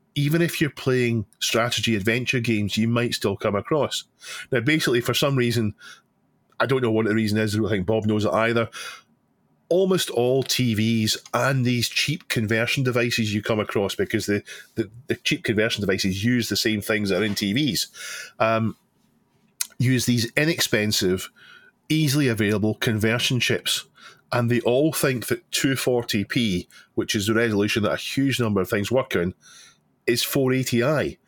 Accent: British